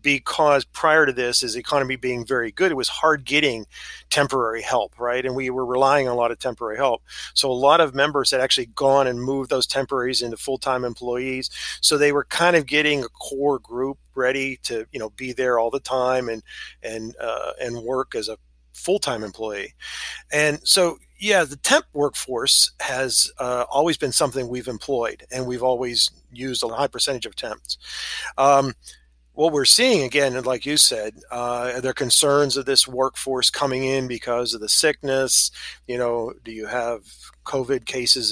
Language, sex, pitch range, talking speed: English, male, 120-145 Hz, 190 wpm